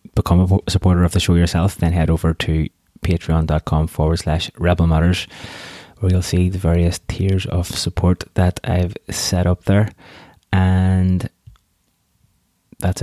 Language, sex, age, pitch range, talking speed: English, male, 20-39, 85-100 Hz, 145 wpm